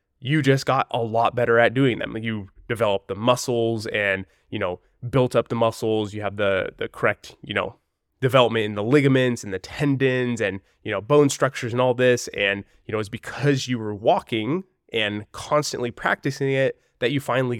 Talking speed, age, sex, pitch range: 195 wpm, 20-39, male, 105-130 Hz